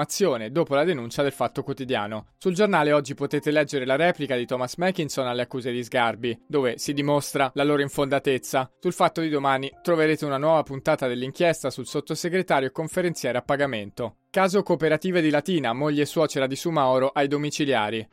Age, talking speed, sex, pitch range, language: 20-39, 170 wpm, male, 130-155 Hz, Italian